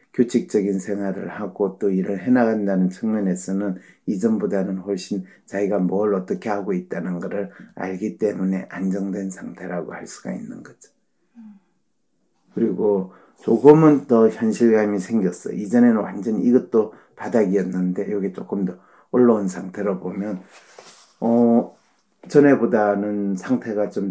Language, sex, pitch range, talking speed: English, male, 95-115 Hz, 105 wpm